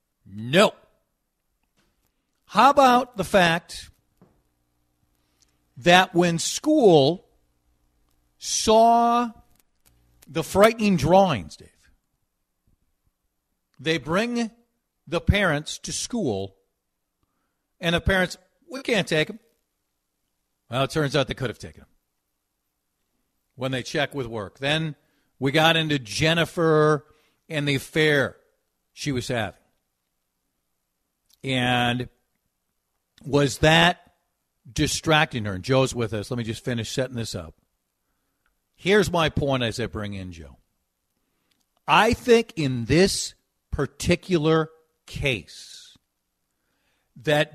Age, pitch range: 50-69, 110-175 Hz